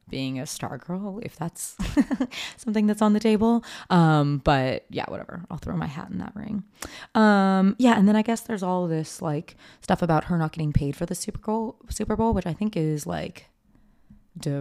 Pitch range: 145-190 Hz